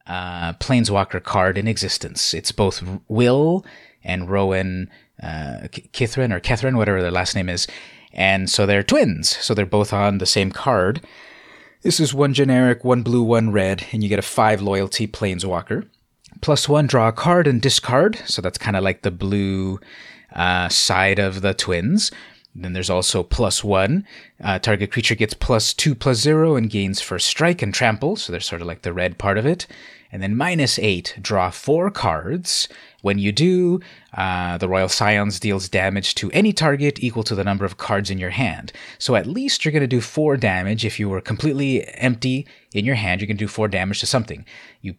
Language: English